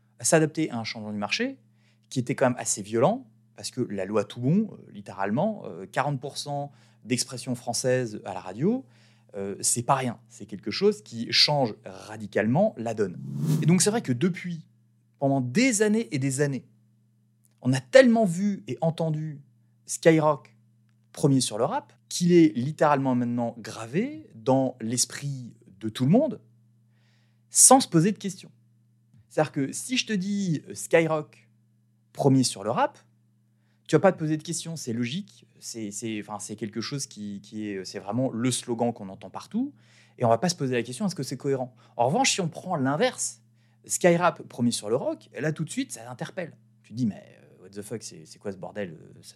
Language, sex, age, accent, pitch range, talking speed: French, male, 30-49, French, 115-160 Hz, 190 wpm